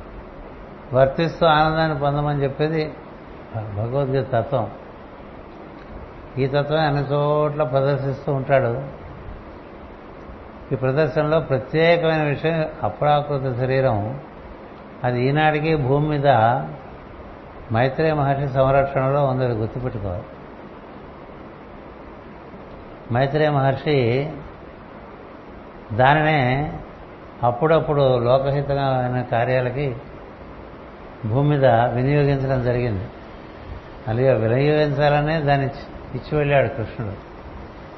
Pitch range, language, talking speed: 125-145 Hz, Telugu, 70 wpm